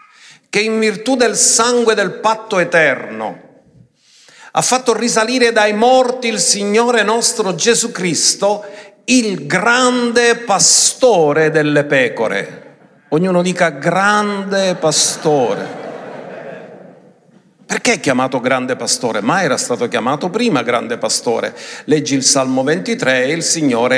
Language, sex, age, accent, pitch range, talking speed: Italian, male, 50-69, native, 155-235 Hz, 115 wpm